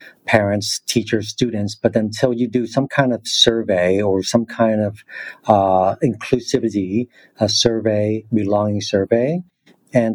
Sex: male